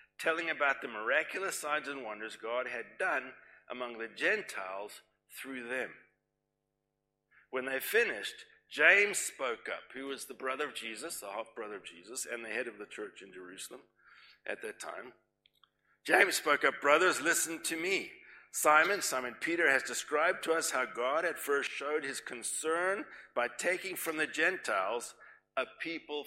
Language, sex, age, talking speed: English, male, 60-79, 160 wpm